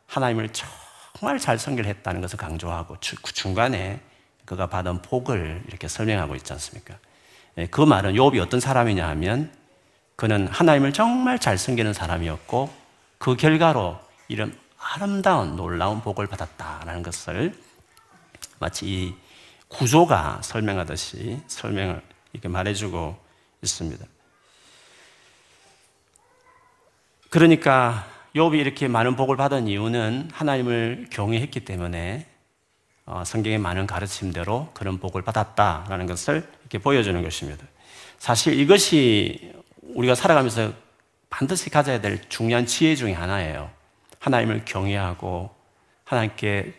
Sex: male